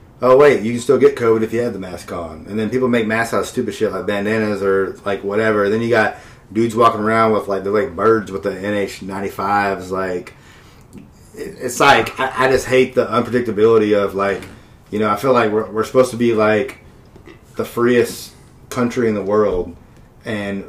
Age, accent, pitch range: 30-49, American, 100-120 Hz